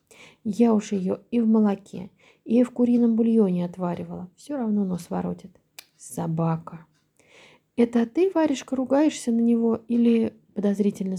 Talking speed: 130 wpm